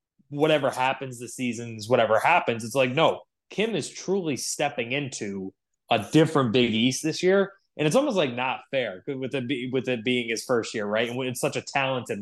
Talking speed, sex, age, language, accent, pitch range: 200 wpm, male, 20-39, English, American, 115-140 Hz